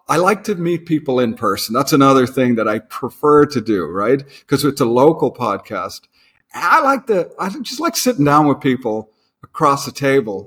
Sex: male